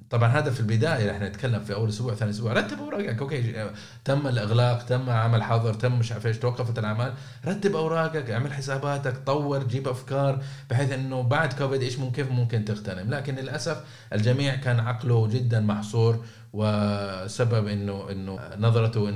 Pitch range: 105-125 Hz